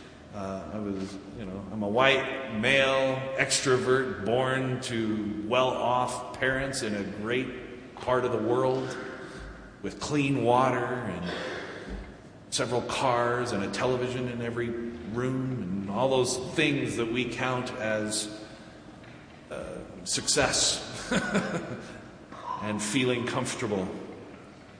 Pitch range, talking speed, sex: 125-185 Hz, 110 wpm, male